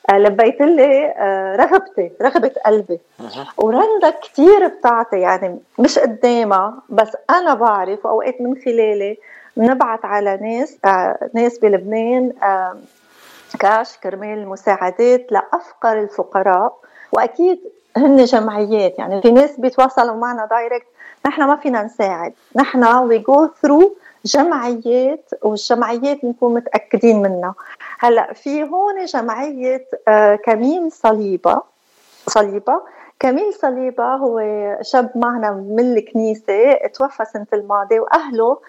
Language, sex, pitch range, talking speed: Arabic, female, 210-275 Hz, 100 wpm